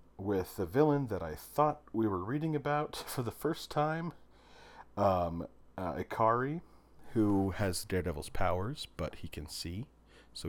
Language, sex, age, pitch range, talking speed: English, male, 40-59, 80-105 Hz, 150 wpm